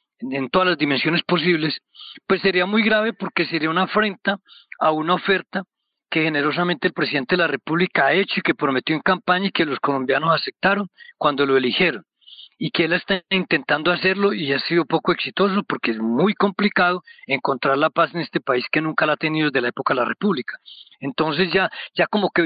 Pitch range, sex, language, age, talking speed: 155-195 Hz, male, Spanish, 40-59, 200 wpm